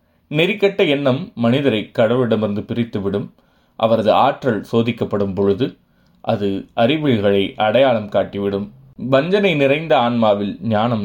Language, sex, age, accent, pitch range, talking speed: Tamil, male, 30-49, native, 100-125 Hz, 90 wpm